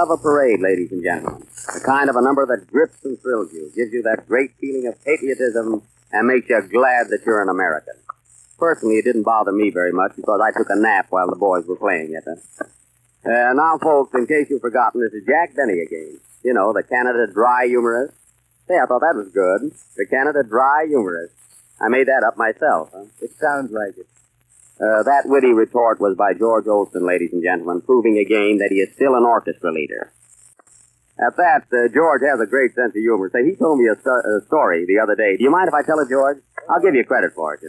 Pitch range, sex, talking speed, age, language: 110-135 Hz, male, 230 wpm, 50-69, English